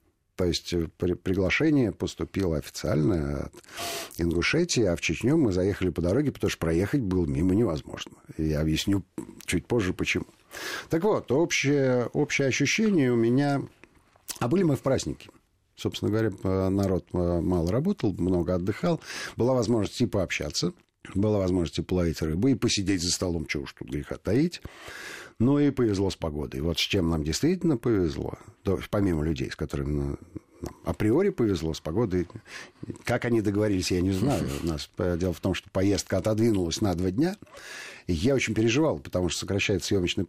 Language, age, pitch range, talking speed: Russian, 50-69, 85-115 Hz, 160 wpm